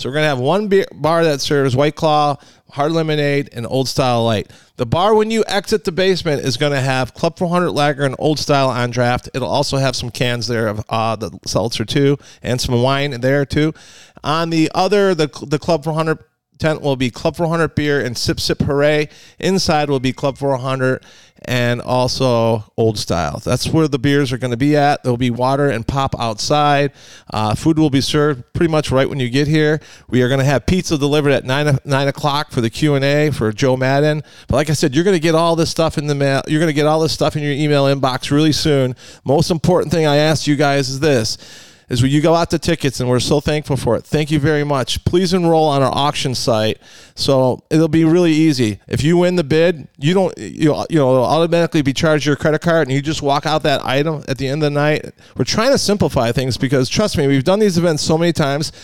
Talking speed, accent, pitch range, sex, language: 240 wpm, American, 130-160 Hz, male, English